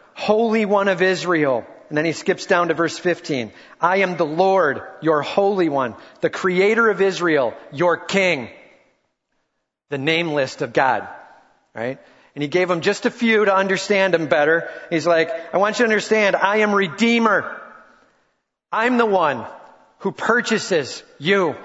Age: 40-59